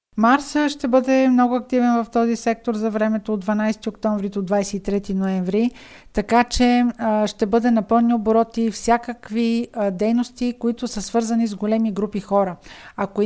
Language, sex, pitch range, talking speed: Bulgarian, female, 205-240 Hz, 150 wpm